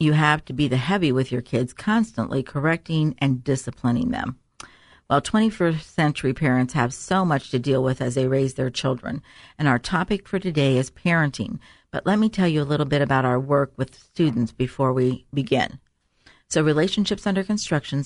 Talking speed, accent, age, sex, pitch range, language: 185 wpm, American, 50-69, female, 135-160 Hz, English